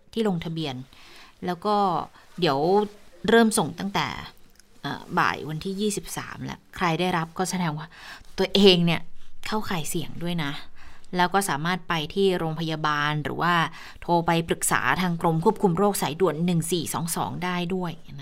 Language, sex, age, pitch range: Thai, female, 20-39, 170-210 Hz